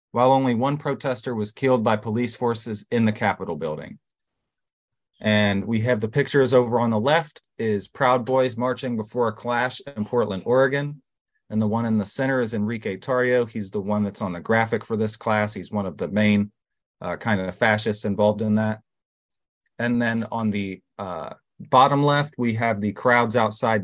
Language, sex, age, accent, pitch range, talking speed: English, male, 30-49, American, 105-130 Hz, 190 wpm